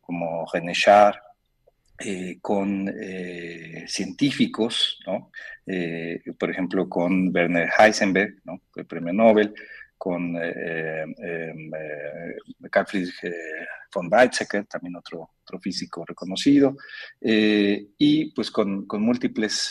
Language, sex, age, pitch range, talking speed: Spanish, male, 40-59, 90-120 Hz, 115 wpm